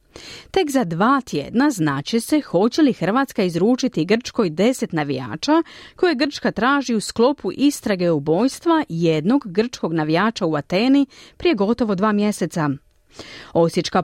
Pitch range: 175-275 Hz